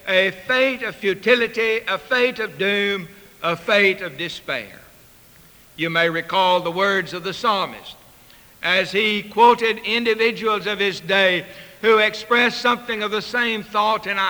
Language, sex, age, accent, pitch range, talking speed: English, male, 60-79, American, 175-220 Hz, 145 wpm